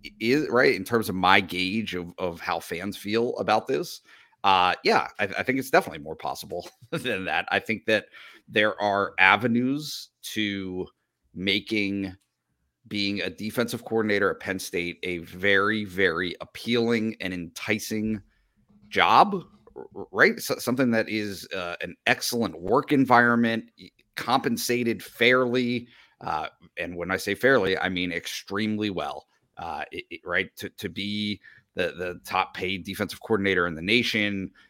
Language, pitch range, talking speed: English, 95-120 Hz, 140 wpm